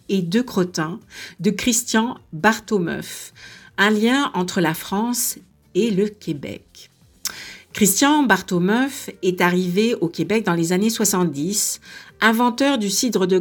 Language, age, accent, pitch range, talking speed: French, 50-69, French, 175-225 Hz, 125 wpm